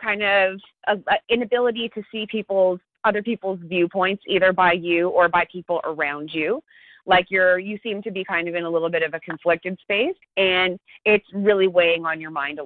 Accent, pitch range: American, 175-225 Hz